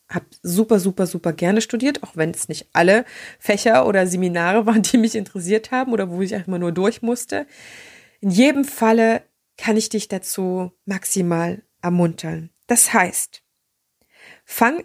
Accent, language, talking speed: German, German, 155 wpm